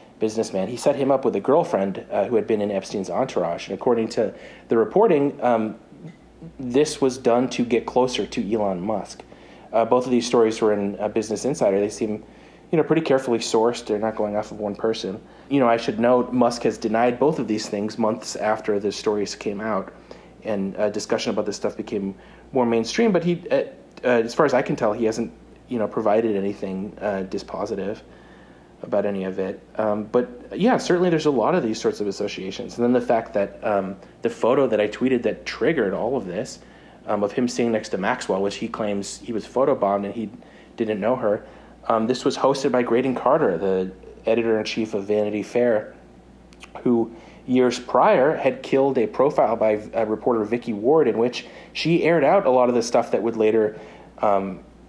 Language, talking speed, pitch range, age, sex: English, 205 wpm, 105-125 Hz, 30-49, male